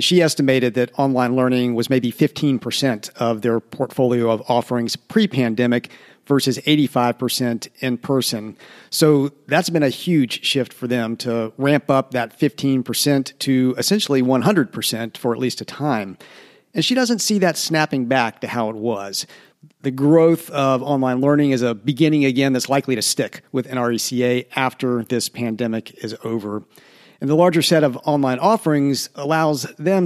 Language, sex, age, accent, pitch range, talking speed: English, male, 50-69, American, 125-150 Hz, 160 wpm